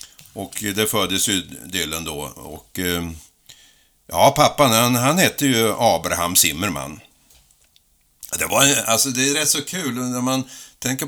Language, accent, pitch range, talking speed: Swedish, native, 90-125 Hz, 145 wpm